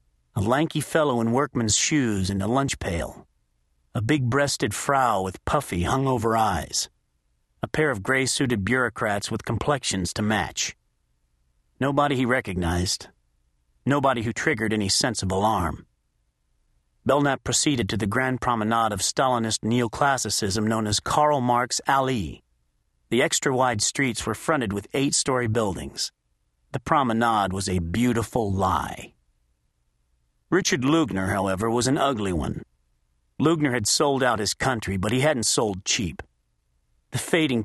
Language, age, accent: English, 40-59, American